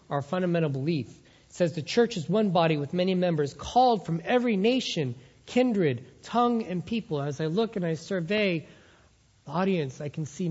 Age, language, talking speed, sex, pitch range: 40-59, English, 175 wpm, male, 140-175 Hz